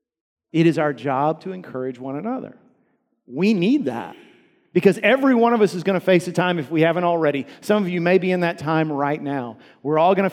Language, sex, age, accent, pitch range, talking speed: English, male, 40-59, American, 145-195 Hz, 230 wpm